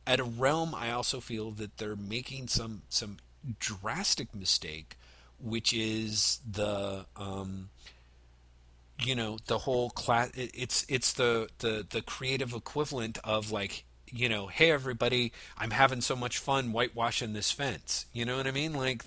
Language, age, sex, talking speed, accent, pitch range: English, 40-59, male, 155 wpm, American, 95-125 Hz